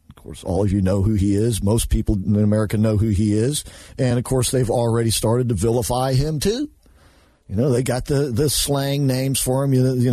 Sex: male